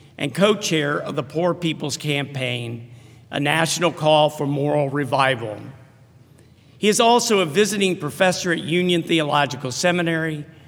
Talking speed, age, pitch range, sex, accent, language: 130 wpm, 50-69, 140-180 Hz, male, American, English